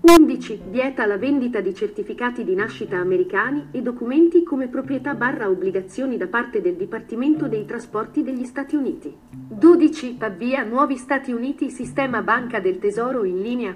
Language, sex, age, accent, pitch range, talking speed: Italian, female, 40-59, native, 235-330 Hz, 155 wpm